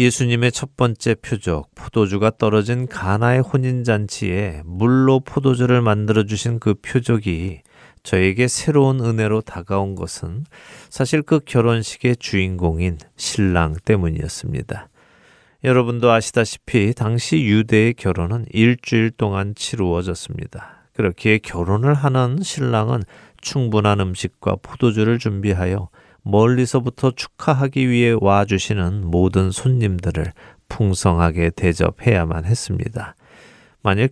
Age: 40-59